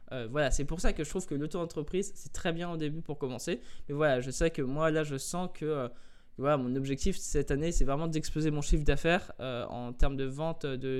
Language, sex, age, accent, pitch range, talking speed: French, male, 20-39, French, 130-160 Hz, 245 wpm